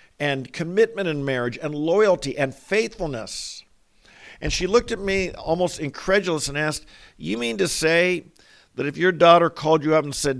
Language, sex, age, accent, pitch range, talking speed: English, male, 50-69, American, 130-175 Hz, 175 wpm